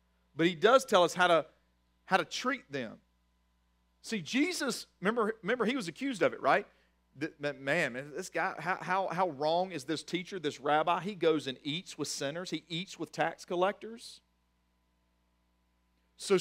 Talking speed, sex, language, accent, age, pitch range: 165 wpm, male, English, American, 40-59, 135-190 Hz